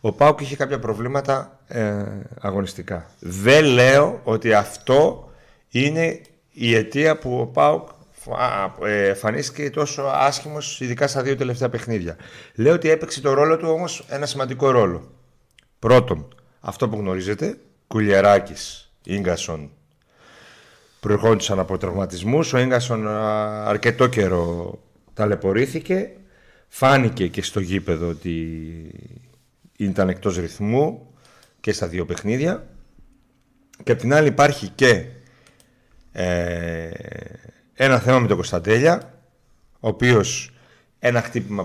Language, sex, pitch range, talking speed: Greek, male, 100-135 Hz, 115 wpm